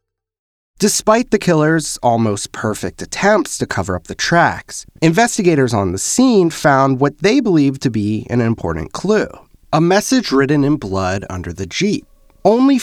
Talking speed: 155 wpm